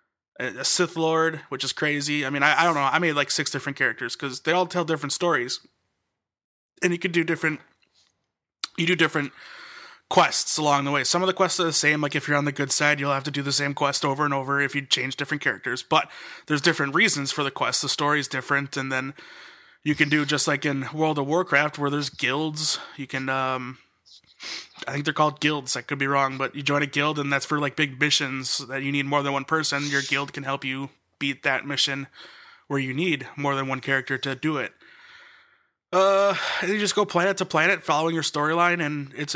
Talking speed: 225 wpm